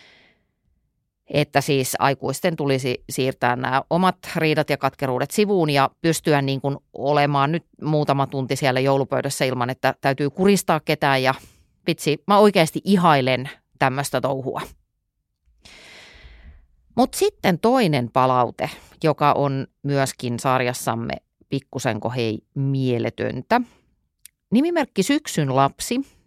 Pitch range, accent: 135-170 Hz, native